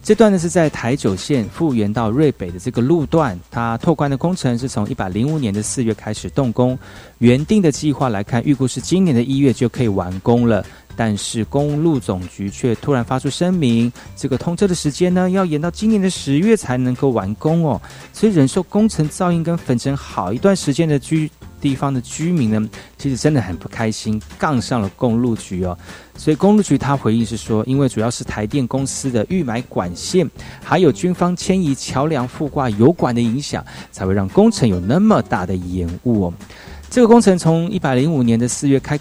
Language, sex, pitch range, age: Chinese, male, 110-150 Hz, 30-49